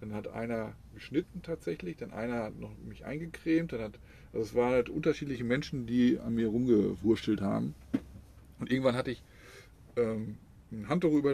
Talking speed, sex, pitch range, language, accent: 170 wpm, male, 105-125 Hz, German, German